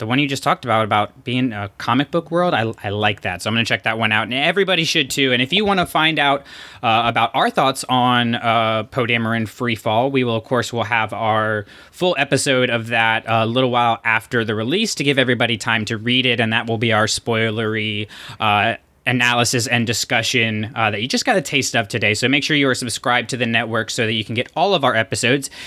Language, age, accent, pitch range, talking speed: English, 20-39, American, 115-140 Hz, 250 wpm